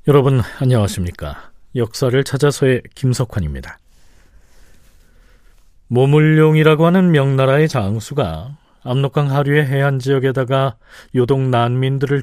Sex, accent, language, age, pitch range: male, native, Korean, 40-59, 110-150 Hz